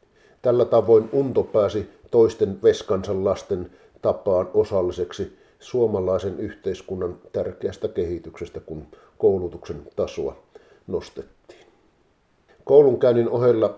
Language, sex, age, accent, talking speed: Finnish, male, 50-69, native, 85 wpm